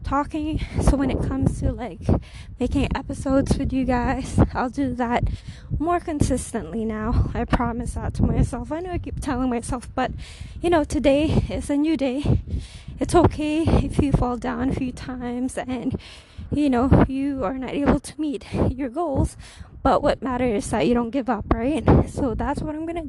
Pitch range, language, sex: 250-295 Hz, English, female